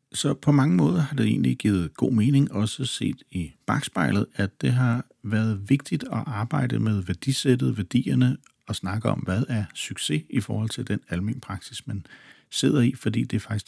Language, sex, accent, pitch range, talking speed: Danish, male, native, 100-130 Hz, 190 wpm